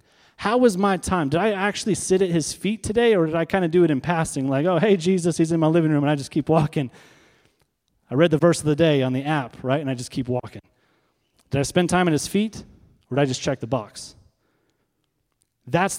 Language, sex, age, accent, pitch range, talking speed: English, male, 30-49, American, 120-170 Hz, 250 wpm